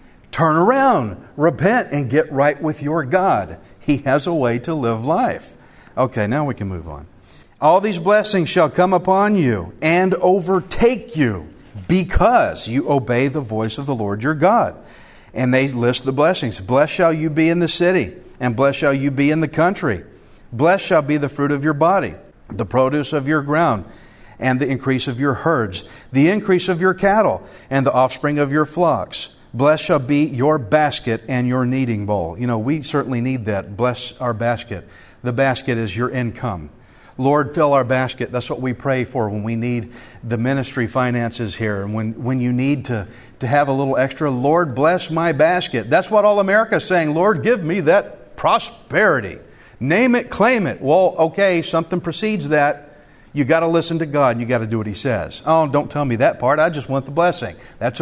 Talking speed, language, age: 200 wpm, English, 50-69